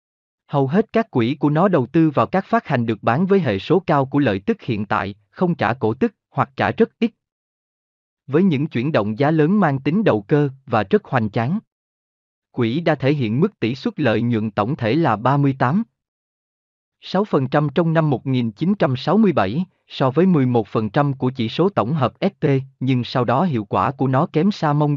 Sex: male